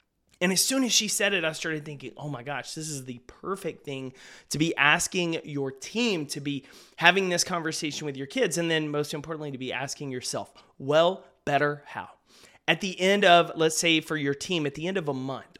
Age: 30-49